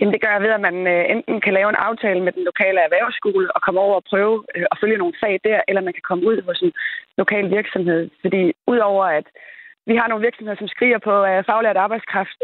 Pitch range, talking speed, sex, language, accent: 200-250 Hz, 215 wpm, female, Danish, native